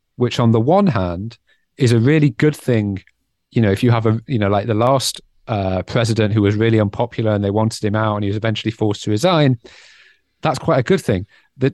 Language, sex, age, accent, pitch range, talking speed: English, male, 40-59, British, 110-135 Hz, 230 wpm